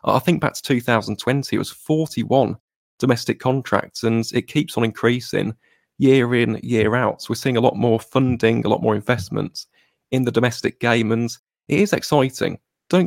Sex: male